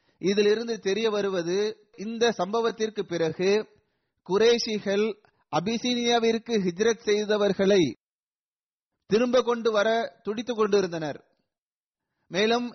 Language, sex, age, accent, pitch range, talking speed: Tamil, male, 30-49, native, 190-225 Hz, 70 wpm